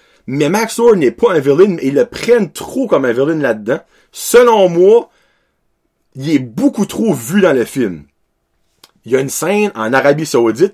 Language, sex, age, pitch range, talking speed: French, male, 30-49, 135-220 Hz, 190 wpm